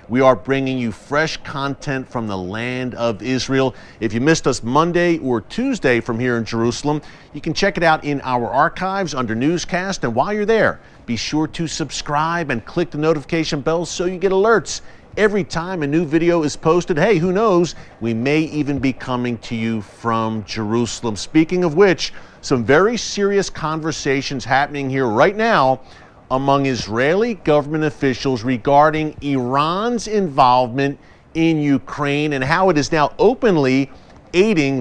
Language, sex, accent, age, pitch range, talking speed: English, male, American, 40-59, 125-165 Hz, 165 wpm